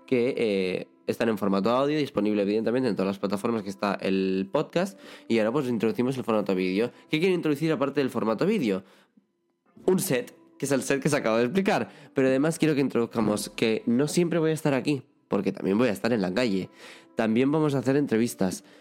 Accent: Spanish